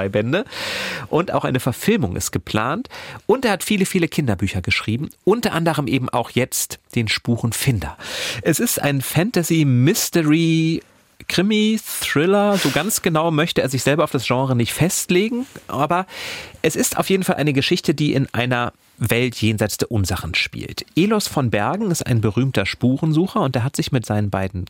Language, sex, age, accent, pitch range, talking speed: German, male, 40-59, German, 110-160 Hz, 170 wpm